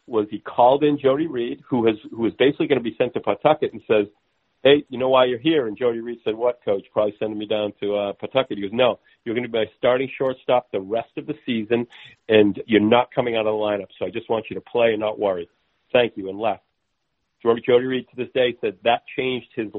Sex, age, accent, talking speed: male, 50-69, American, 250 wpm